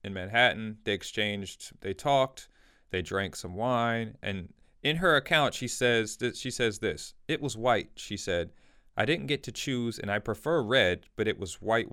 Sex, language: male, English